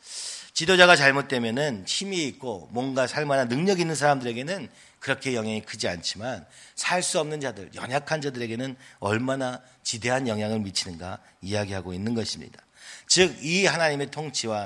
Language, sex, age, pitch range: Korean, male, 40-59, 105-145 Hz